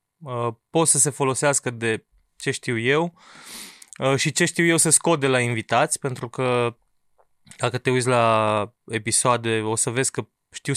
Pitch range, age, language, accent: 120-155 Hz, 20-39, Romanian, native